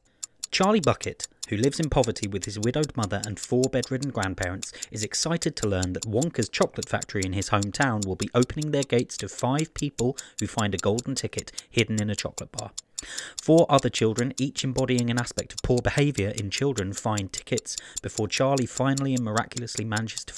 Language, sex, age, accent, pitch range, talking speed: English, male, 30-49, British, 110-135 Hz, 190 wpm